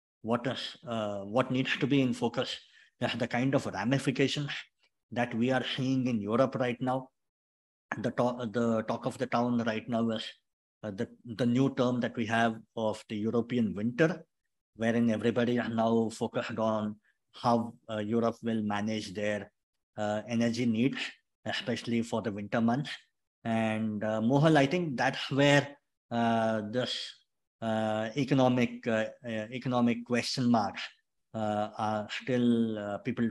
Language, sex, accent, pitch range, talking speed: English, male, Indian, 110-125 Hz, 155 wpm